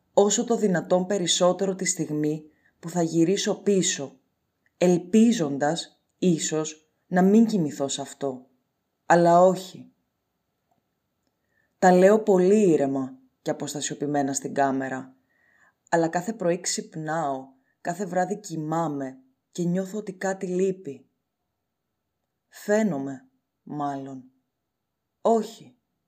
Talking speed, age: 95 wpm, 20-39